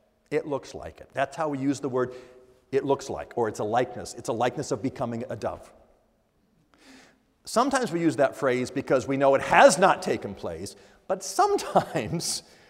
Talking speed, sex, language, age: 185 wpm, male, English, 50-69